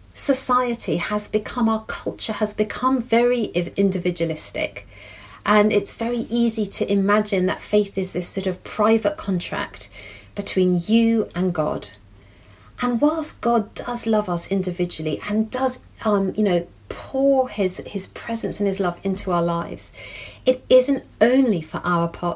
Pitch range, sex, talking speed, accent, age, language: 175-225 Hz, female, 145 wpm, British, 40-59, English